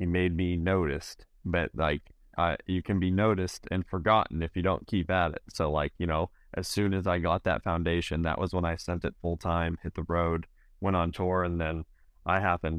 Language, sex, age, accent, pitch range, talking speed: English, male, 30-49, American, 80-95 Hz, 220 wpm